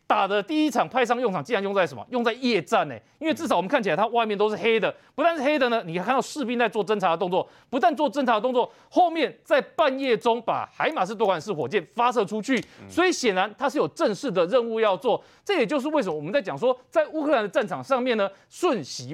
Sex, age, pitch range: male, 30-49, 195-290 Hz